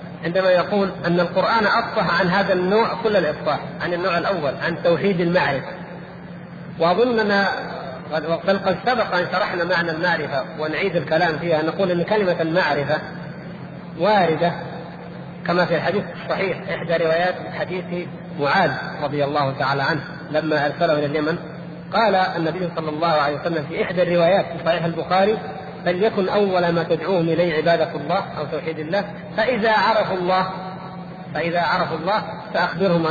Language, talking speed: Arabic, 140 wpm